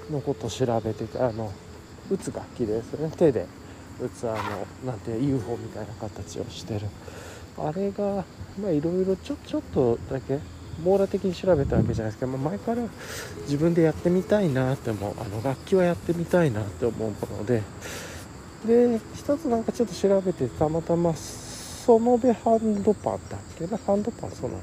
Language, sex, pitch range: Japanese, male, 110-170 Hz